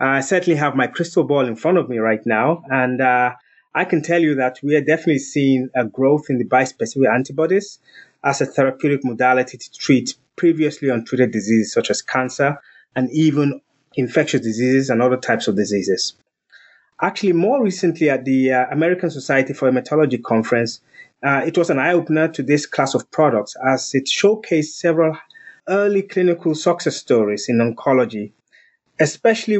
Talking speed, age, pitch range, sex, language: 165 wpm, 30-49, 130-170 Hz, male, English